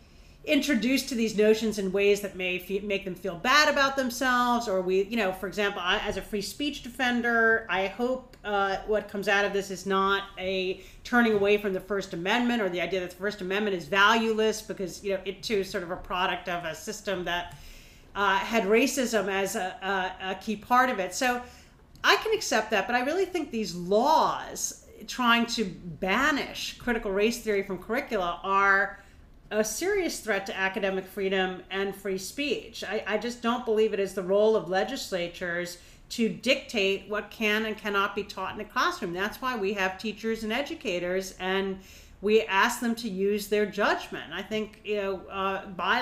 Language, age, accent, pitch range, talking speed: English, 40-59, American, 190-225 Hz, 195 wpm